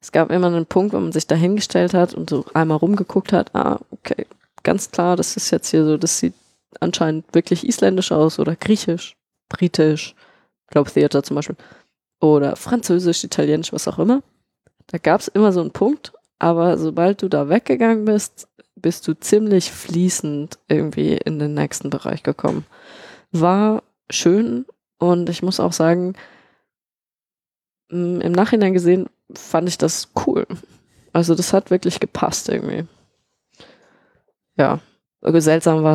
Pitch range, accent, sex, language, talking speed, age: 155-190 Hz, German, female, German, 150 wpm, 20-39